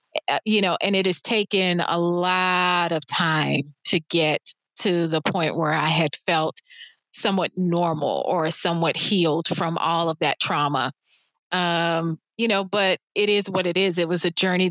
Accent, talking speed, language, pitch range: American, 170 wpm, English, 165-190 Hz